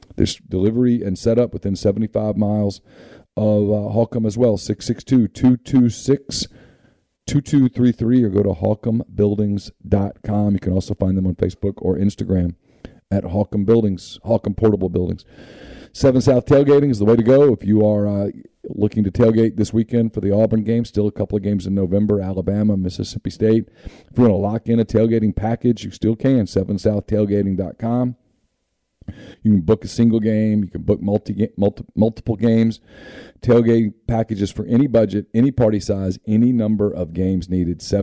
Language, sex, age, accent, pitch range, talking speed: English, male, 40-59, American, 100-115 Hz, 160 wpm